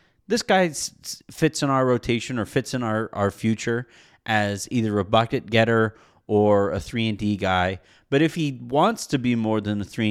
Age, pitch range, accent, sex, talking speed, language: 30-49, 105-135 Hz, American, male, 195 wpm, English